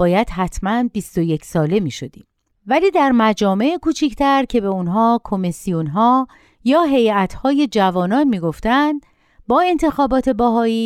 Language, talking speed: Persian, 115 wpm